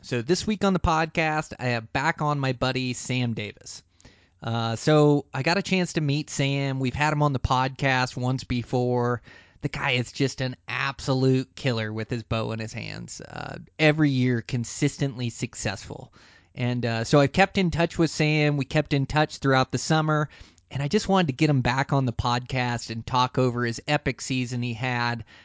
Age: 30-49